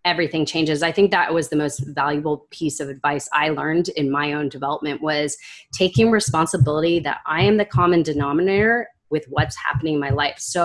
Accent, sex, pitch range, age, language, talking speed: American, female, 145-185 Hz, 30-49, English, 190 wpm